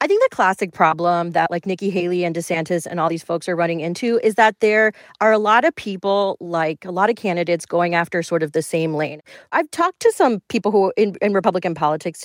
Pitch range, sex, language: 165-220 Hz, female, English